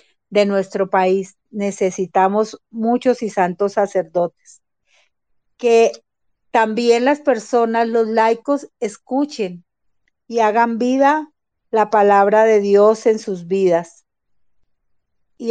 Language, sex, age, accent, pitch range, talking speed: Spanish, female, 40-59, American, 195-240 Hz, 100 wpm